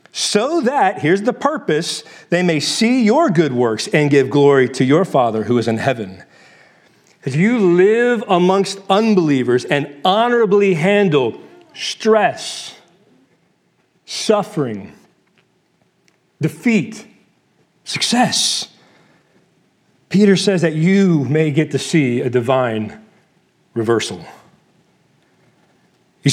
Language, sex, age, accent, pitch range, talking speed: English, male, 40-59, American, 145-205 Hz, 105 wpm